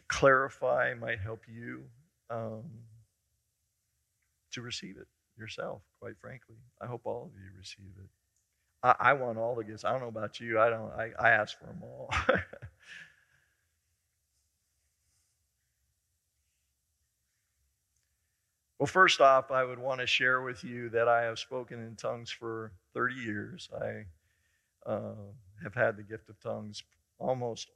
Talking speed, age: 140 wpm, 50-69